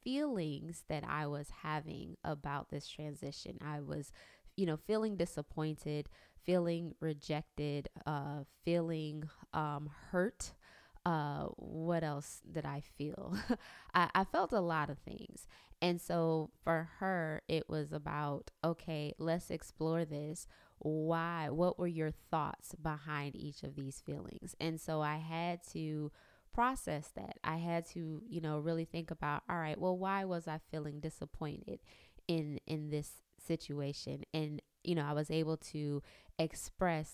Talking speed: 145 wpm